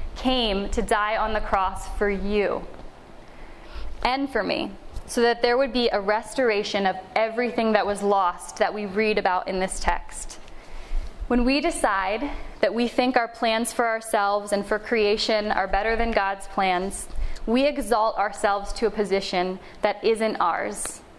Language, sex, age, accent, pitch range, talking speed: English, female, 20-39, American, 200-240 Hz, 160 wpm